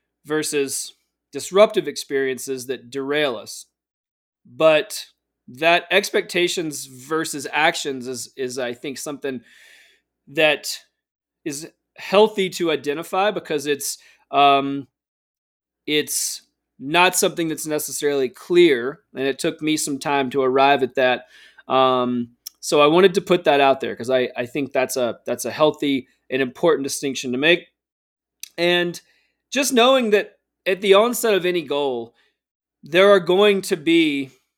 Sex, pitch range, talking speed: male, 135-175 Hz, 135 wpm